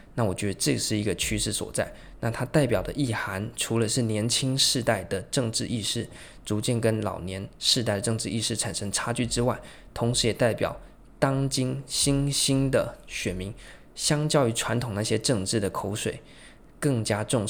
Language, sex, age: Chinese, male, 20-39